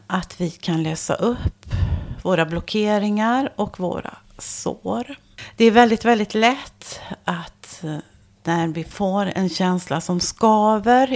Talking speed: 125 wpm